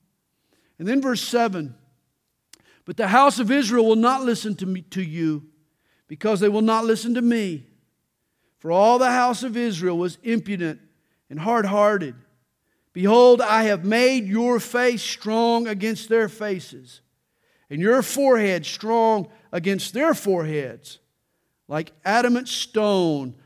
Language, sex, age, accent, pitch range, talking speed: English, male, 50-69, American, 150-220 Hz, 135 wpm